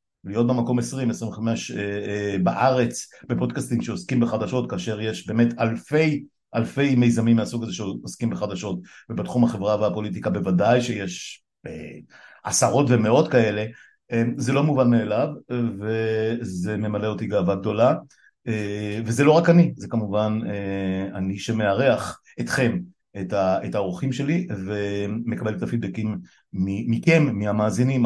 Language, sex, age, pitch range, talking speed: Hebrew, male, 50-69, 100-125 Hz, 130 wpm